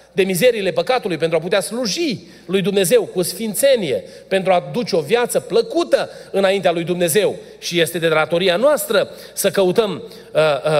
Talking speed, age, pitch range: 155 wpm, 30-49, 185-265 Hz